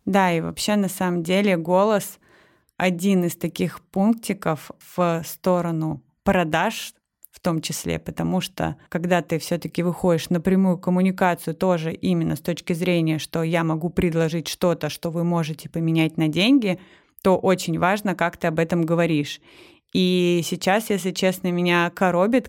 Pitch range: 175-200 Hz